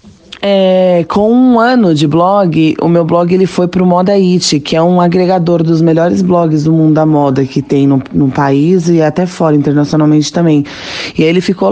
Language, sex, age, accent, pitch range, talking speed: Portuguese, female, 20-39, Brazilian, 150-185 Hz, 200 wpm